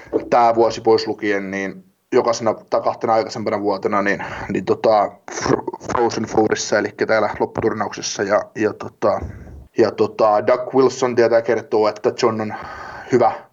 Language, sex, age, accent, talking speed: Finnish, male, 20-39, native, 135 wpm